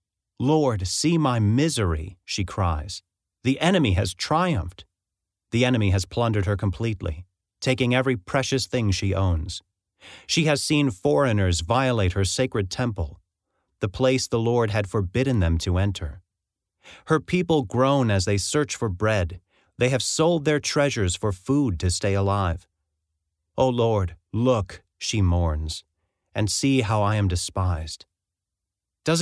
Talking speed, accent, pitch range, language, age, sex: 140 wpm, American, 95-130 Hz, English, 30-49, male